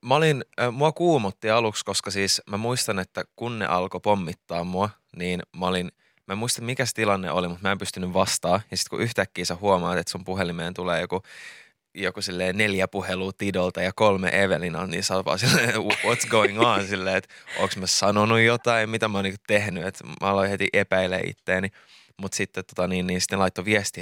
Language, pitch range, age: Finnish, 90-100 Hz, 20-39